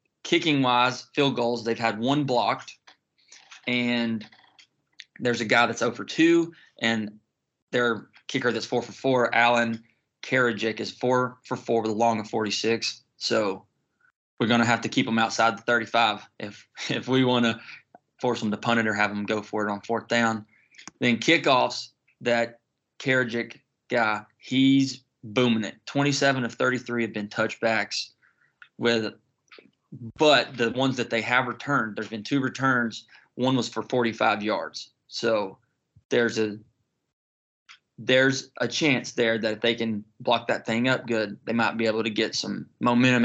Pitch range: 110-125 Hz